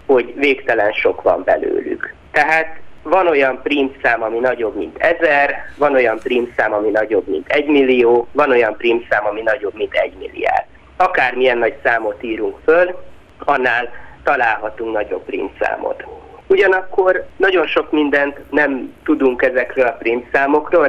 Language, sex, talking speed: Hungarian, male, 130 wpm